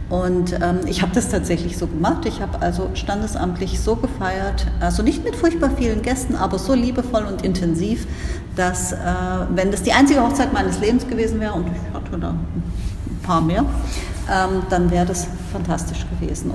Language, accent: German, German